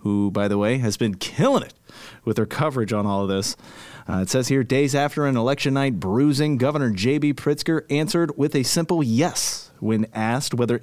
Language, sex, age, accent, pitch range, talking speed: English, male, 30-49, American, 115-145 Hz, 200 wpm